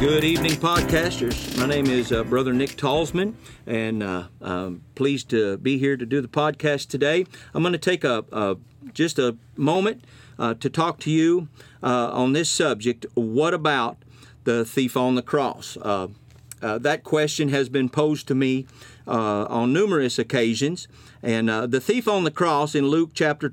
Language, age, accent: English, 50-69, American